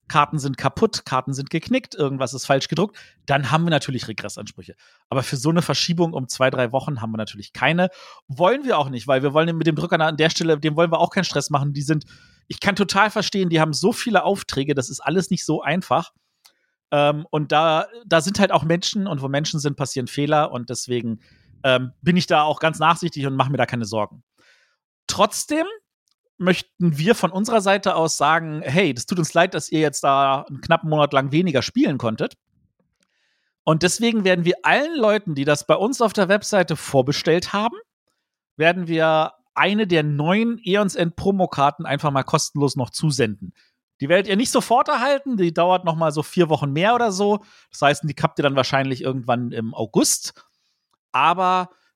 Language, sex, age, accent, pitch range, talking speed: German, male, 40-59, German, 140-185 Hz, 195 wpm